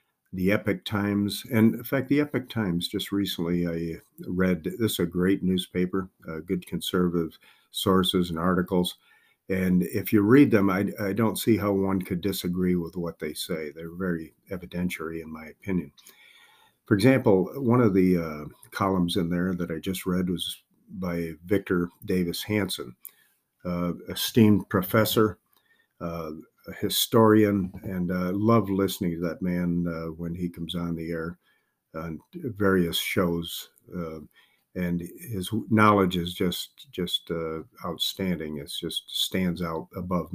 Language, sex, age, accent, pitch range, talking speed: English, male, 50-69, American, 85-105 Hz, 150 wpm